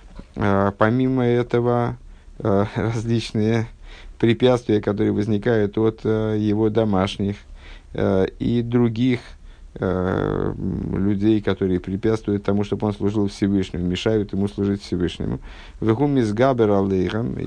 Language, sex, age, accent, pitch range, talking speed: Russian, male, 50-69, native, 95-120 Hz, 80 wpm